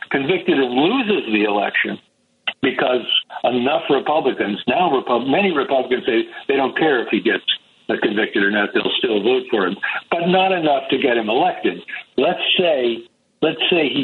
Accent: American